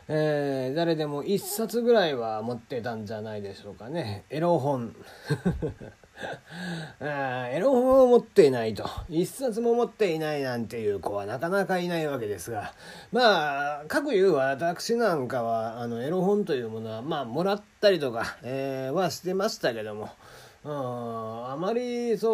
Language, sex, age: Japanese, male, 40-59